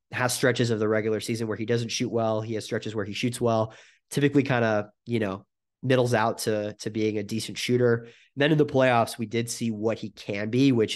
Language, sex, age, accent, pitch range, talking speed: English, male, 30-49, American, 105-120 Hz, 235 wpm